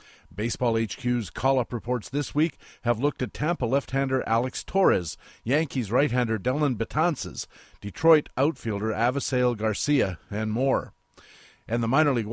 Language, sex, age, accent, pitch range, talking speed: English, male, 50-69, American, 115-145 Hz, 130 wpm